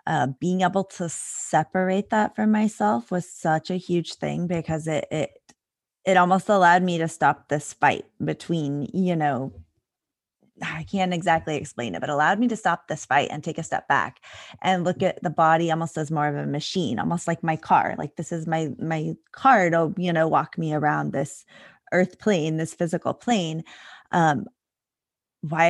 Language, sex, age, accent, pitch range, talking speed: English, female, 20-39, American, 155-185 Hz, 185 wpm